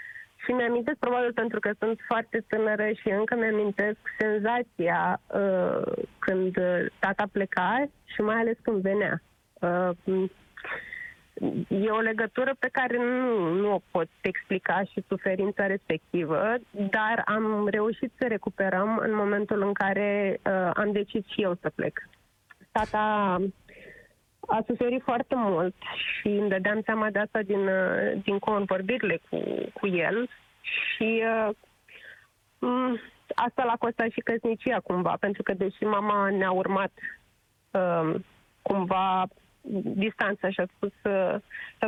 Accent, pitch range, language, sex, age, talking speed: native, 195-240 Hz, Romanian, female, 20-39, 120 wpm